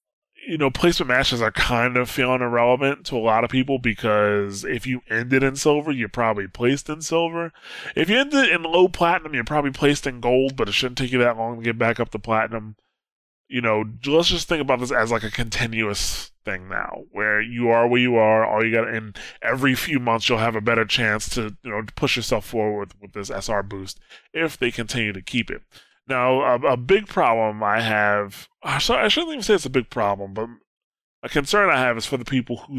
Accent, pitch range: American, 110-135 Hz